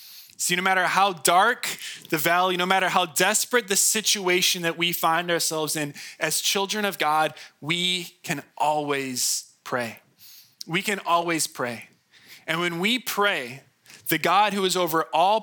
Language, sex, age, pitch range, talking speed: English, male, 20-39, 140-180 Hz, 155 wpm